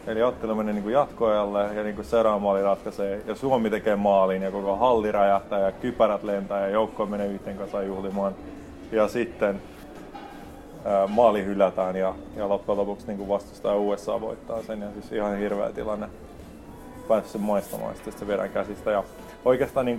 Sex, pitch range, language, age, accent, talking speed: male, 100-110 Hz, Finnish, 30-49, native, 170 wpm